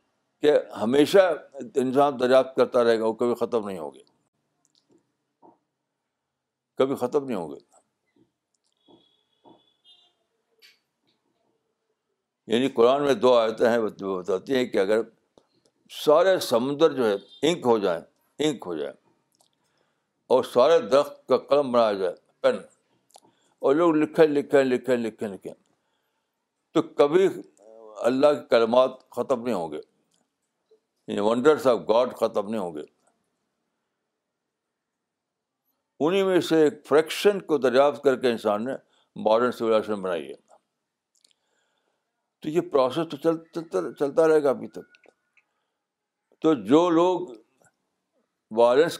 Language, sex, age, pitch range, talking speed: Urdu, male, 60-79, 125-180 Hz, 125 wpm